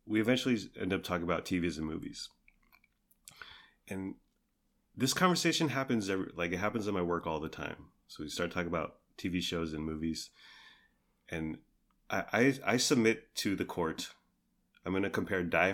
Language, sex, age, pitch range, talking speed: English, male, 30-49, 85-145 Hz, 170 wpm